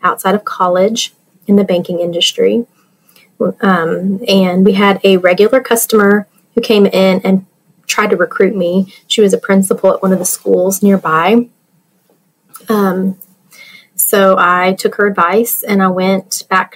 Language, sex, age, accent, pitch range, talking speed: English, female, 30-49, American, 180-210 Hz, 150 wpm